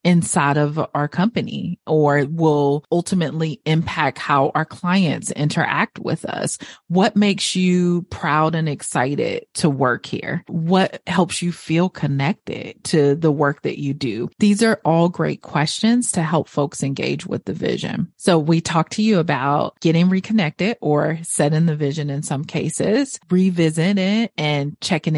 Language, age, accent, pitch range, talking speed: English, 30-49, American, 145-185 Hz, 155 wpm